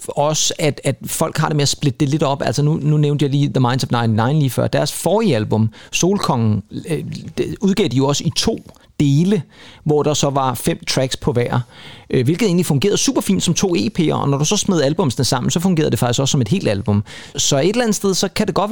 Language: Danish